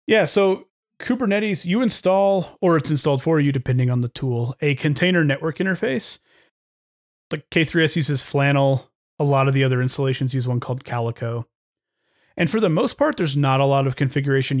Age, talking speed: 30-49, 175 wpm